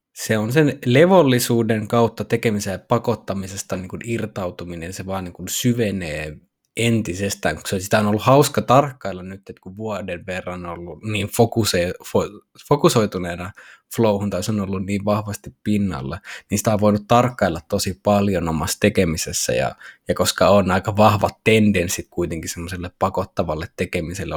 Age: 20-39